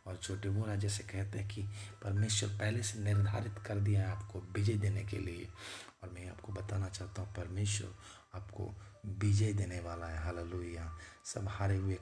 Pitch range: 95-105 Hz